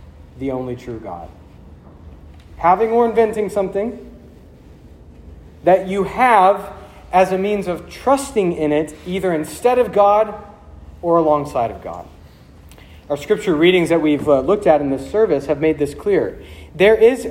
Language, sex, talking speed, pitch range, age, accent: English, male, 145 wpm, 120-185 Hz, 40-59, American